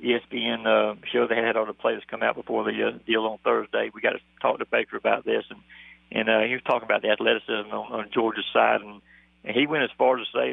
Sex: male